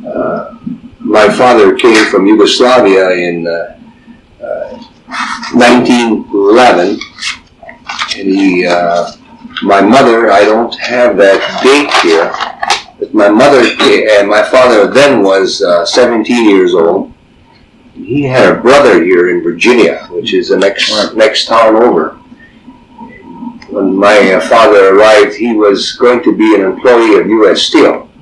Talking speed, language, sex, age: 130 wpm, English, male, 50-69